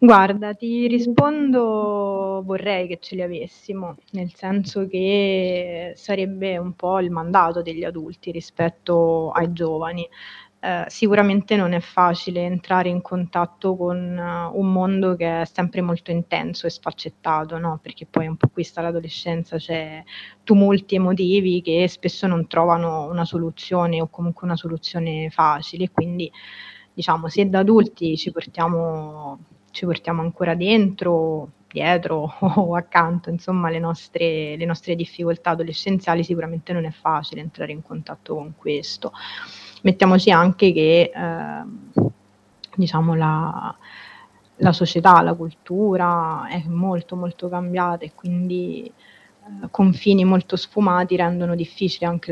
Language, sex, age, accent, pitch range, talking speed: Italian, female, 20-39, native, 165-185 Hz, 130 wpm